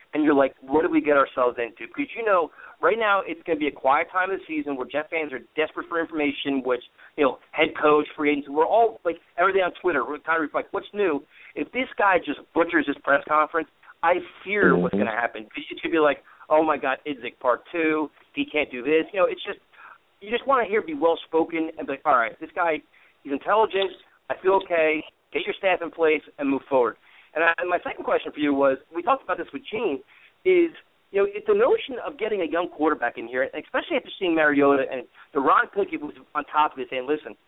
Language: English